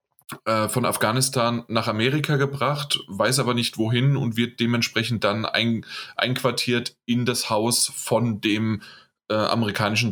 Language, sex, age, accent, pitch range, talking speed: German, male, 20-39, German, 110-130 Hz, 130 wpm